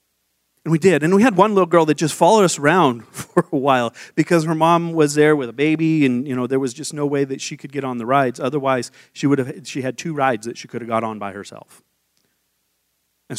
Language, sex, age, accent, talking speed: English, male, 30-49, American, 255 wpm